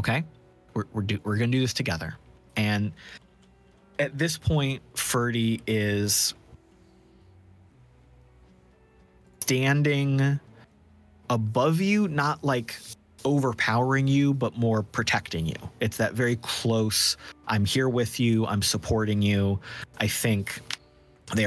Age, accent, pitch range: 30-49, American, 100-125 Hz